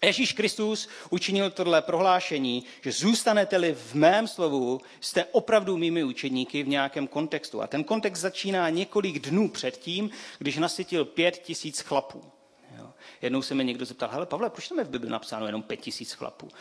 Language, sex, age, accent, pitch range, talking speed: Czech, male, 40-59, native, 135-185 Hz, 165 wpm